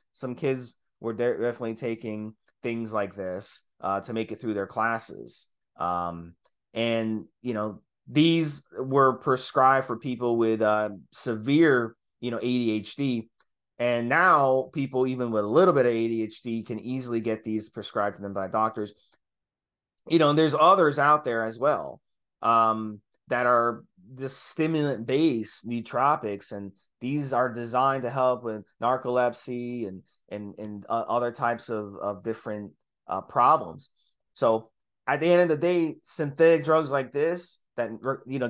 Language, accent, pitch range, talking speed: English, American, 110-140 Hz, 155 wpm